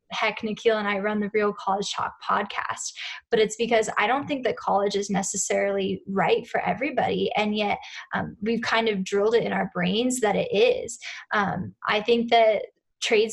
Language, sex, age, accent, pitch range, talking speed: English, female, 10-29, American, 205-240 Hz, 190 wpm